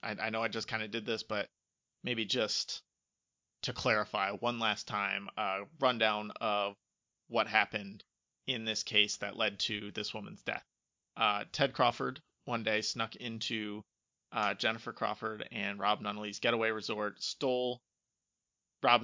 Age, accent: 30-49, American